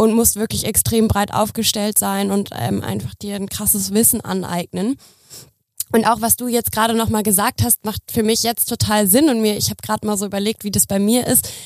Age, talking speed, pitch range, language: 20-39, 220 wpm, 205-230 Hz, German